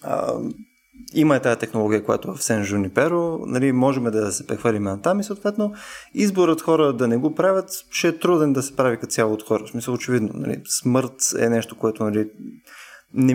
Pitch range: 115-155 Hz